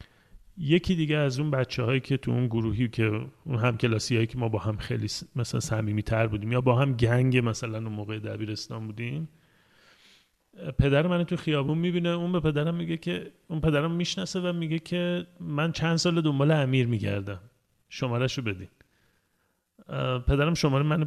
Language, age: Persian, 30-49